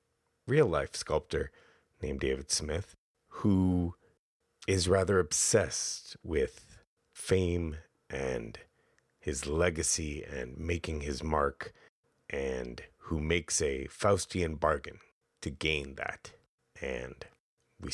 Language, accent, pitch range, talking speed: English, American, 85-115 Hz, 100 wpm